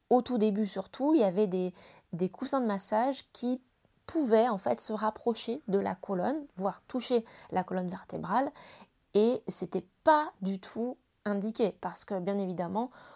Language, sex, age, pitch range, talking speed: French, female, 20-39, 180-225 Hz, 165 wpm